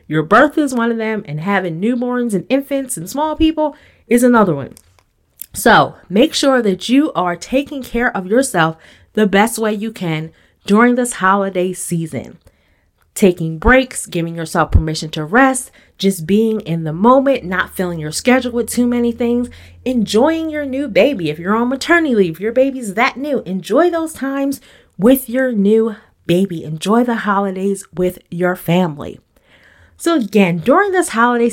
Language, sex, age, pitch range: English, female, 30-49, 175-245 Hz